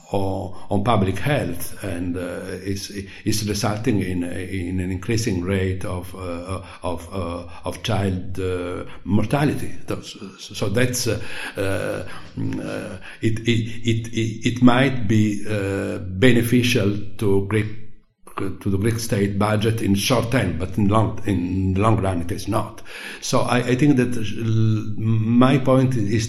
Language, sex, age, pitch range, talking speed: English, male, 60-79, 90-110 Hz, 145 wpm